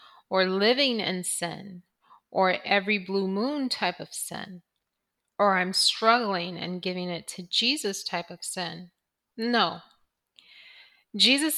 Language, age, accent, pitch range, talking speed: English, 30-49, American, 185-230 Hz, 125 wpm